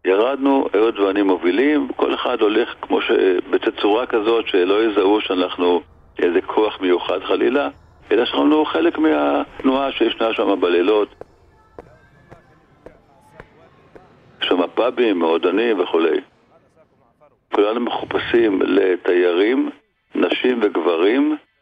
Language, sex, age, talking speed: Hebrew, male, 60-79, 100 wpm